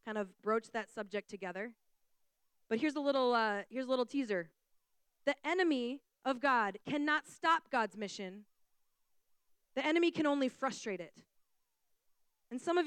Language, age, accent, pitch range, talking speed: English, 20-39, American, 205-250 Hz, 135 wpm